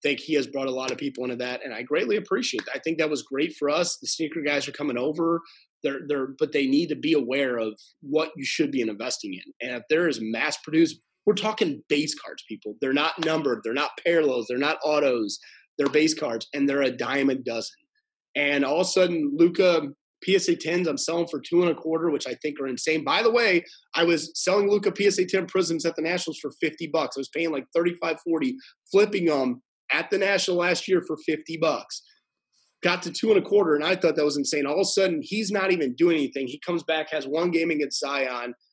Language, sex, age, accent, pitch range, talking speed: English, male, 30-49, American, 145-195 Hz, 235 wpm